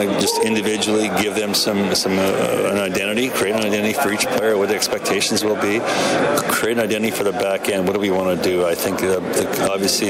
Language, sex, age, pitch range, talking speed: English, male, 30-49, 95-105 Hz, 225 wpm